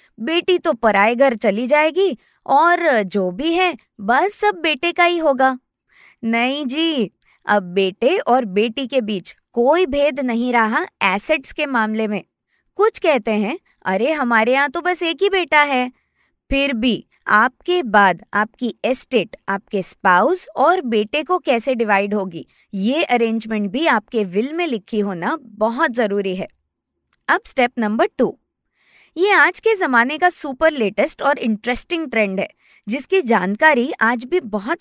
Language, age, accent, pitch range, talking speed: Hindi, 20-39, native, 220-310 Hz, 150 wpm